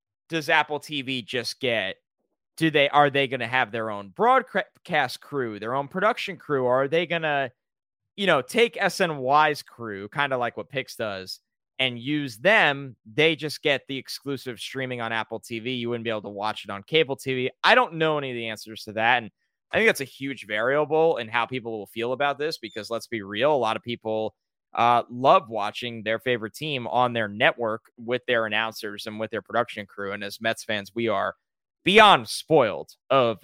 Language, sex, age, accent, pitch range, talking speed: English, male, 20-39, American, 115-155 Hz, 205 wpm